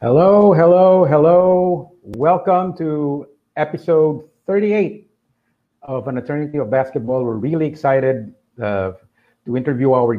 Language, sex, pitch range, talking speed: English, male, 105-130 Hz, 110 wpm